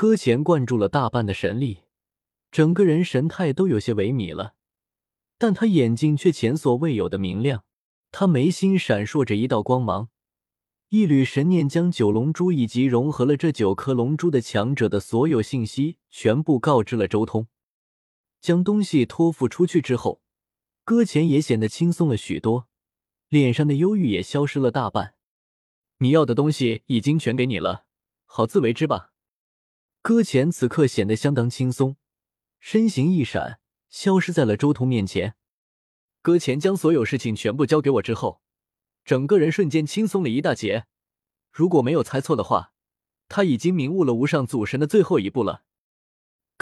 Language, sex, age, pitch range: Chinese, male, 20-39, 110-165 Hz